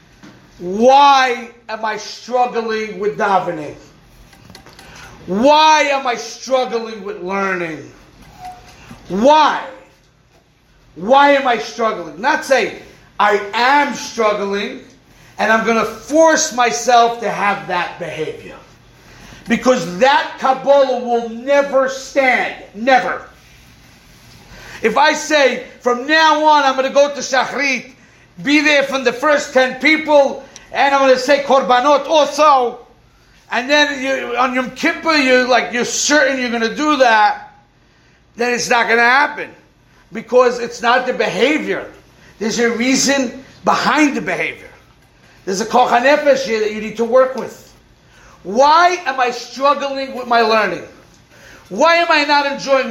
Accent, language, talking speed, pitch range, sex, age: American, English, 135 wpm, 230-280 Hz, male, 40-59